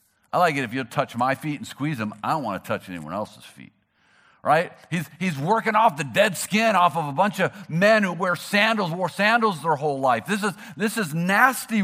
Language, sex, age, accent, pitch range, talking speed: English, male, 50-69, American, 130-195 Hz, 230 wpm